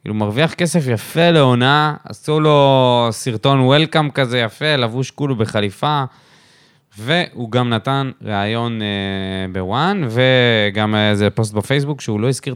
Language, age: Hebrew, 20-39